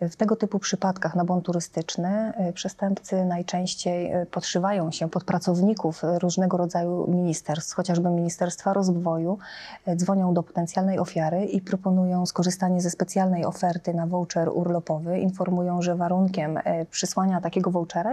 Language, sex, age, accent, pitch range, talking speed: Polish, female, 20-39, native, 175-190 Hz, 125 wpm